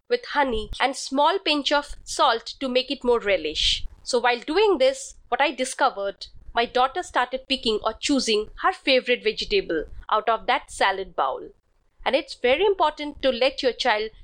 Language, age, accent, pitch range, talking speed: English, 30-49, Indian, 240-315 Hz, 175 wpm